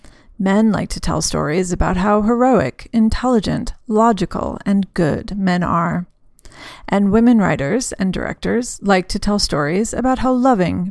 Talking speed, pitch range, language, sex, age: 145 wpm, 185-220 Hz, English, female, 30-49